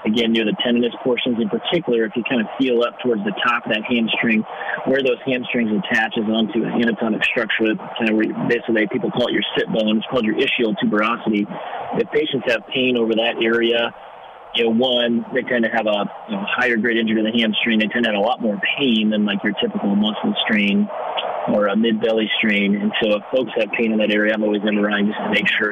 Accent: American